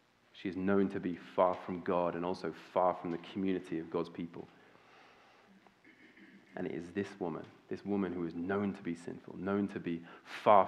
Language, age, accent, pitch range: English, 30-49, British, 85-100 Hz